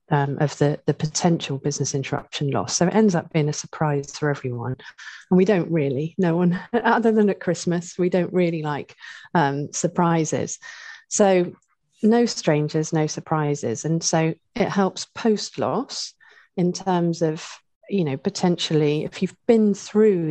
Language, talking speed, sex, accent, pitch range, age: English, 155 wpm, female, British, 150-180 Hz, 40-59